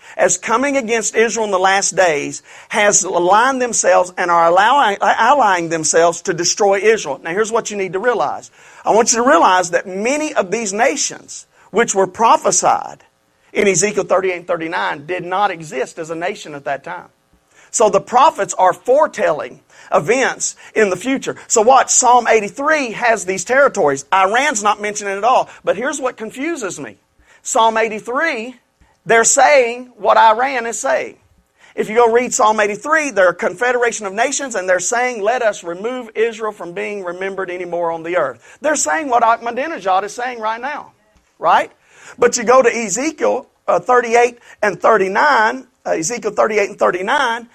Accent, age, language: American, 40-59, English